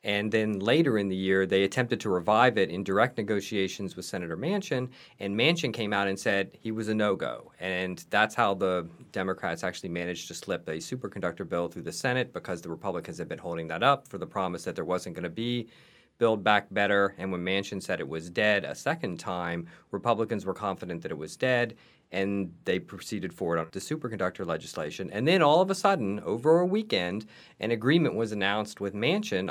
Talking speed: 205 wpm